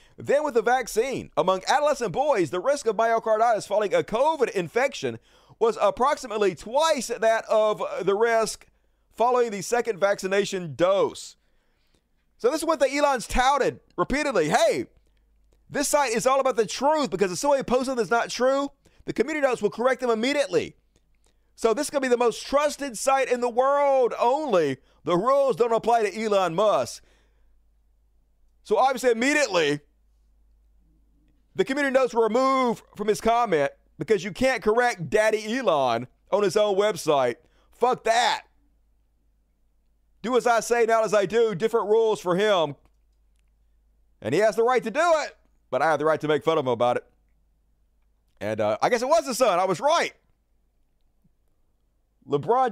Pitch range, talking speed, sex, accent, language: 155-255 Hz, 165 wpm, male, American, English